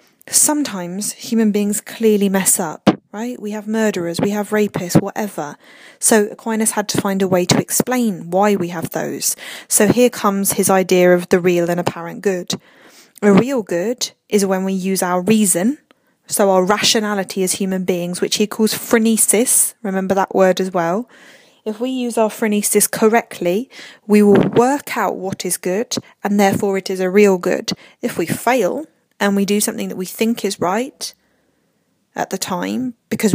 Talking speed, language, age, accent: 175 wpm, English, 20-39, British